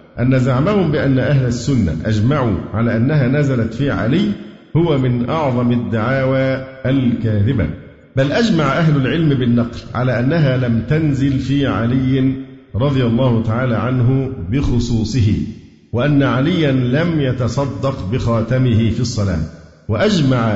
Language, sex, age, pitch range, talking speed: Arabic, male, 50-69, 115-135 Hz, 115 wpm